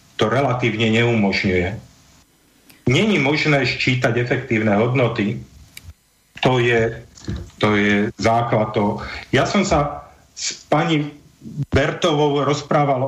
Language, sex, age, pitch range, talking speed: Slovak, male, 40-59, 115-140 Hz, 90 wpm